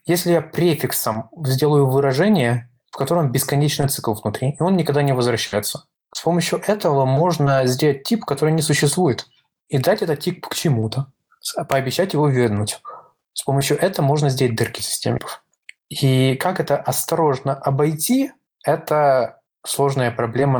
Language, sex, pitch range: Russian, male, 125-155 Hz